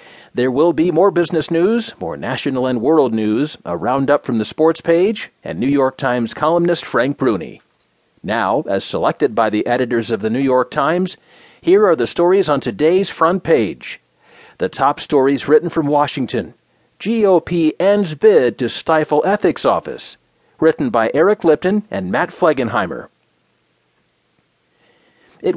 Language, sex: English, male